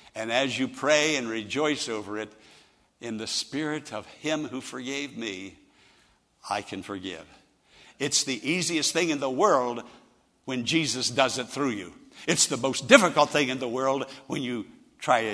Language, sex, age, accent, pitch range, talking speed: English, male, 60-79, American, 125-195 Hz, 170 wpm